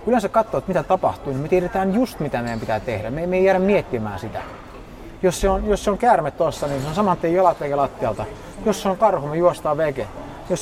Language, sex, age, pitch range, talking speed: Finnish, male, 30-49, 125-175 Hz, 245 wpm